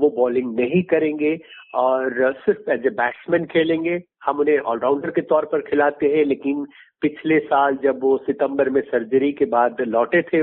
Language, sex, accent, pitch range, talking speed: Hindi, male, native, 135-180 Hz, 175 wpm